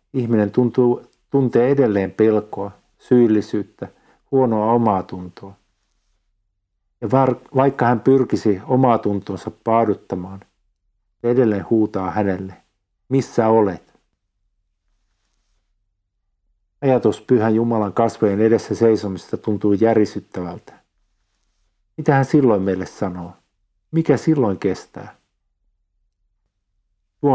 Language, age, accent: Finnish, 50-69, native